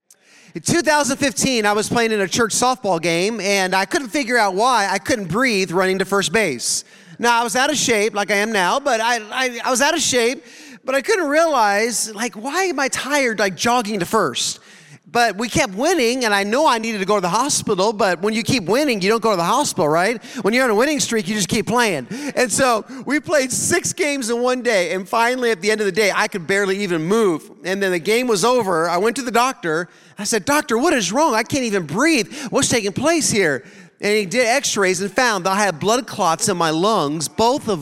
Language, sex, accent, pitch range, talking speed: English, male, American, 200-260 Hz, 245 wpm